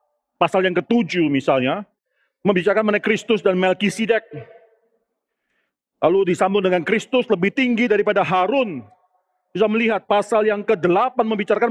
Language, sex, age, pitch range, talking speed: Indonesian, male, 40-59, 195-240 Hz, 120 wpm